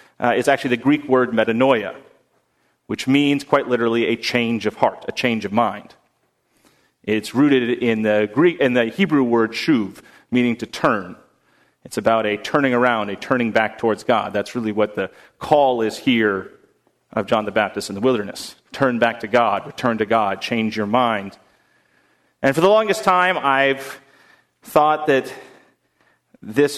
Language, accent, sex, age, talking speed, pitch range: English, American, male, 40-59, 170 wpm, 115-145 Hz